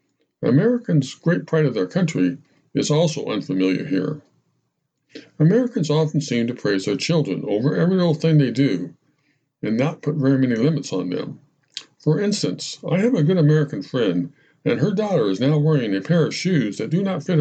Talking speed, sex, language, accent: 185 wpm, male, English, American